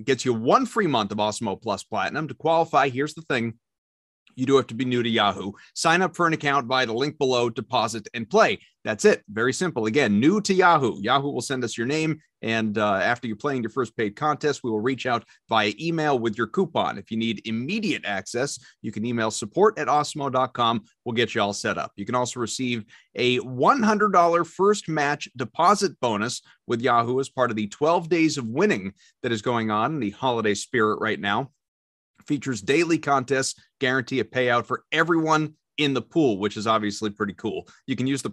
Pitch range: 115-150 Hz